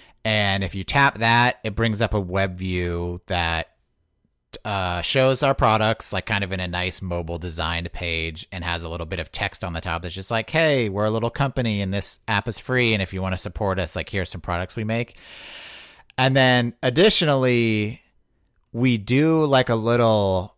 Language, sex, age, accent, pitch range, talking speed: English, male, 30-49, American, 95-120 Hz, 200 wpm